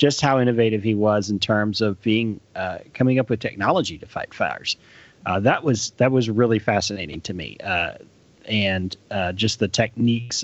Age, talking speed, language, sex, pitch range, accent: 30-49, 185 wpm, English, male, 105-120 Hz, American